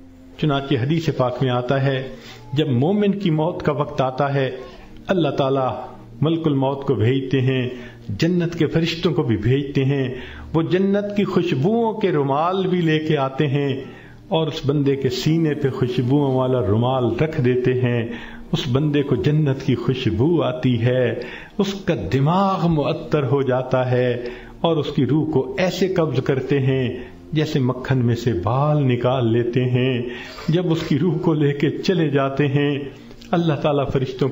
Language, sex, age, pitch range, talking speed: Urdu, male, 50-69, 125-160 Hz, 170 wpm